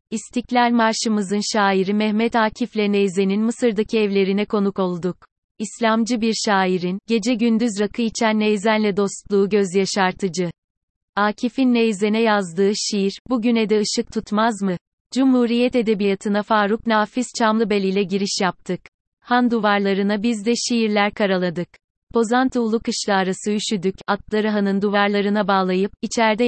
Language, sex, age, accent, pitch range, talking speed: Turkish, female, 30-49, native, 195-225 Hz, 120 wpm